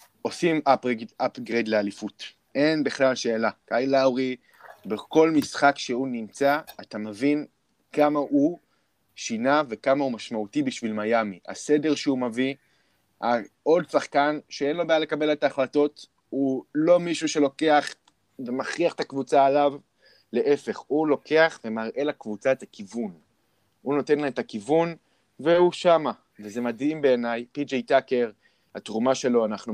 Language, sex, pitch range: Hebrew, male, 110-145 Hz